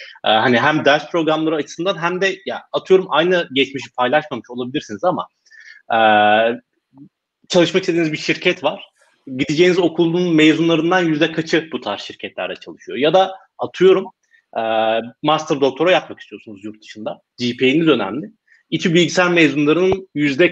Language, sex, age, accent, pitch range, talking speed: Turkish, male, 30-49, native, 120-170 Hz, 135 wpm